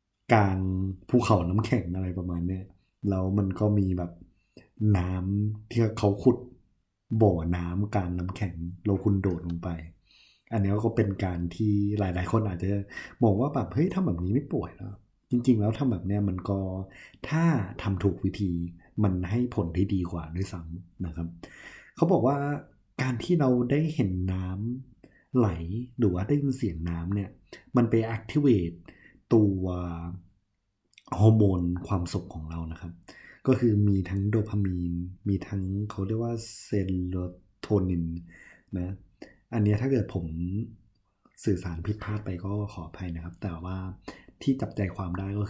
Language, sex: Thai, male